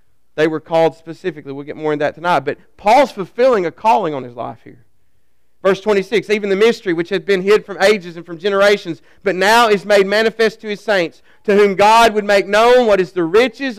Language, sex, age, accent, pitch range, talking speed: English, male, 40-59, American, 175-240 Hz, 220 wpm